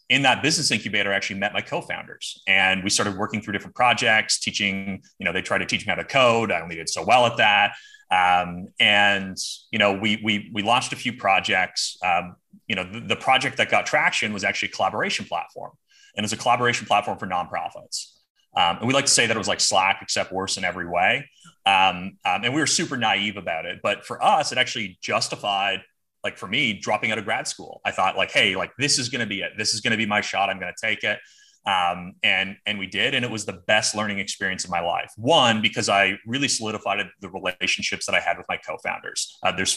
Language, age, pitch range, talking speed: English, 30-49, 95-120 Hz, 235 wpm